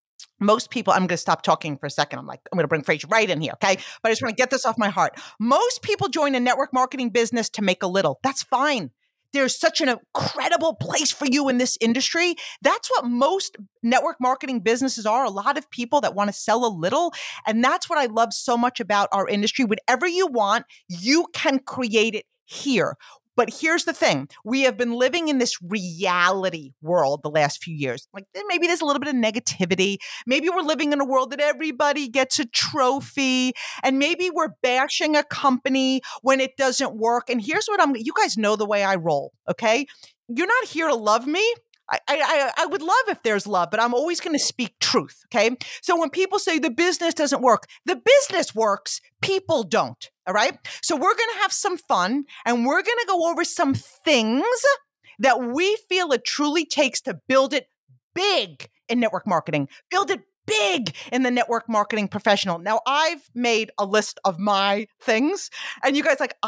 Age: 40-59